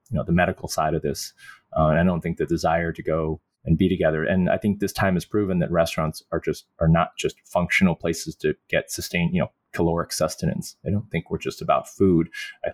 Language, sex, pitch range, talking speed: English, male, 85-100 Hz, 230 wpm